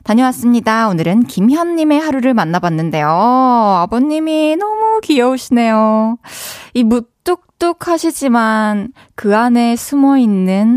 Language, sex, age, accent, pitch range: Korean, female, 20-39, native, 175-255 Hz